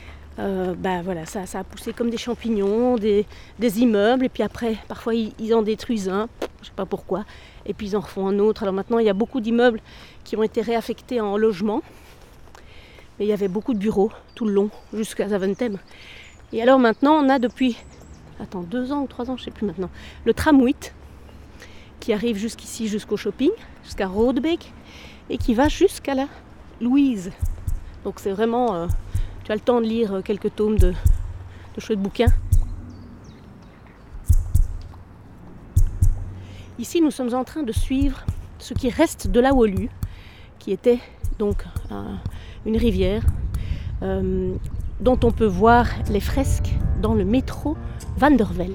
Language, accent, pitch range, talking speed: English, French, 175-245 Hz, 170 wpm